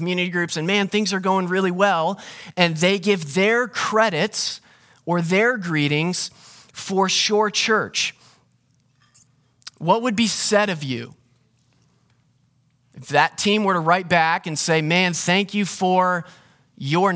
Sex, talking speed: male, 140 wpm